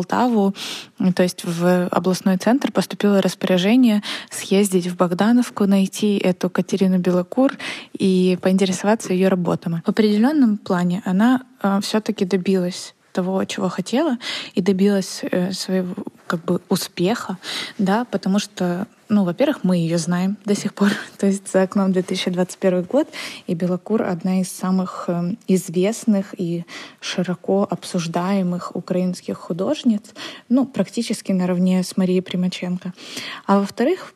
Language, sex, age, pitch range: Ukrainian, female, 20-39, 185-215 Hz